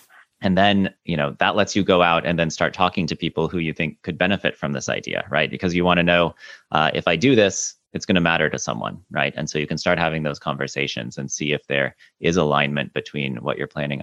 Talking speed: 250 wpm